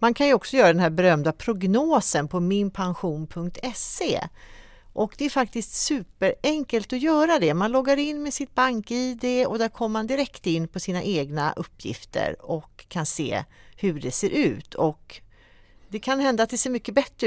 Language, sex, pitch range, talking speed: Swedish, female, 160-245 Hz, 175 wpm